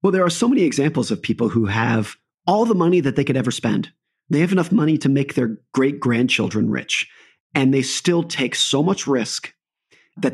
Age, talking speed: 30-49, 210 wpm